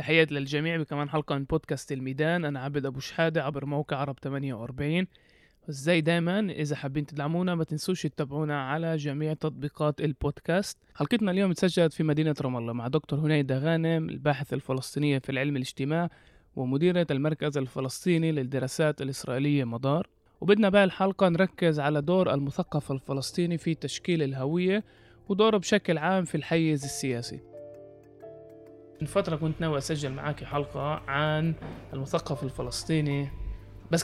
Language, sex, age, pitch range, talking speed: Arabic, male, 20-39, 135-165 Hz, 130 wpm